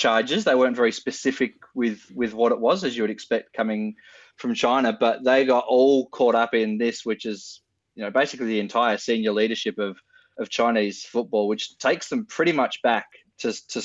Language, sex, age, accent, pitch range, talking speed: English, male, 20-39, Australian, 105-125 Hz, 200 wpm